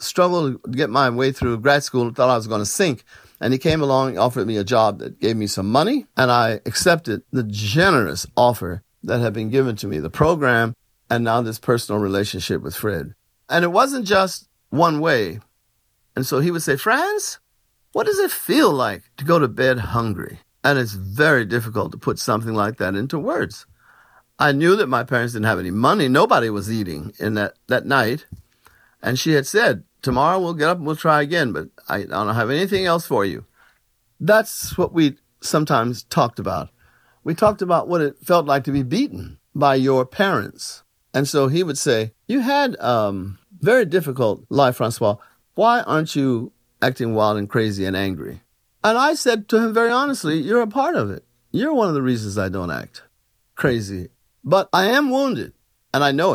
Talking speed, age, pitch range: 200 wpm, 50-69, 115-175 Hz